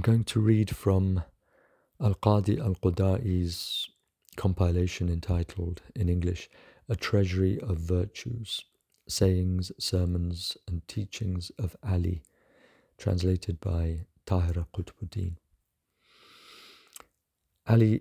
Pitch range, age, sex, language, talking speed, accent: 90-105 Hz, 50-69, male, English, 85 wpm, British